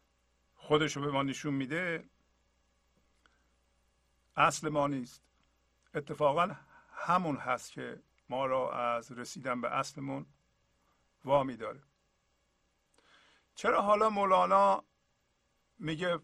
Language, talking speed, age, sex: English, 90 wpm, 50-69, male